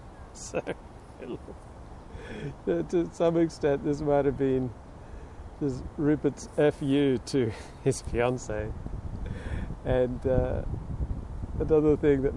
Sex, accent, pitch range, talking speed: male, American, 105-125 Hz, 85 wpm